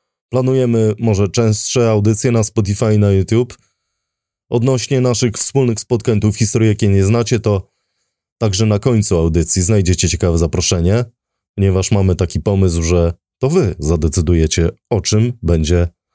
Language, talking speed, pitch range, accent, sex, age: English, 135 wpm, 90-115 Hz, Polish, male, 20-39